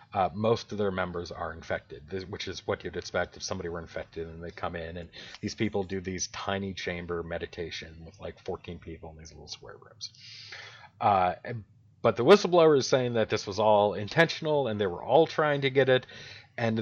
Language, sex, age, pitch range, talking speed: English, male, 30-49, 90-115 Hz, 205 wpm